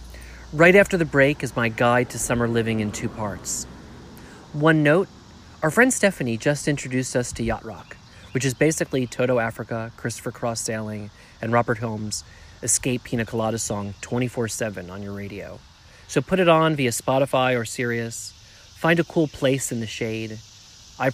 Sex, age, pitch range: male, 30-49, 105-135 Hz